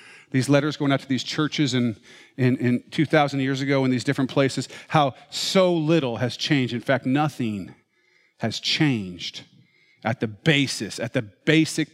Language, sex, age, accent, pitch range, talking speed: English, male, 40-59, American, 130-180 Hz, 165 wpm